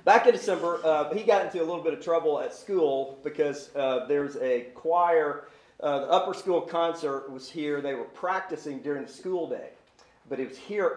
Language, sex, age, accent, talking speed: English, male, 40-59, American, 200 wpm